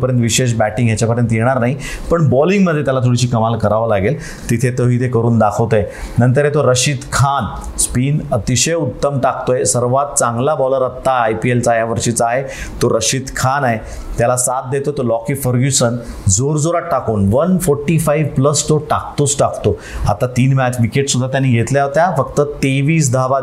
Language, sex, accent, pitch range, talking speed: Marathi, male, native, 120-140 Hz, 80 wpm